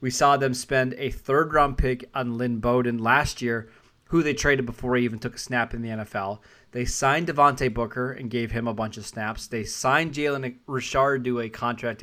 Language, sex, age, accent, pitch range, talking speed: English, male, 20-39, American, 120-150 Hz, 210 wpm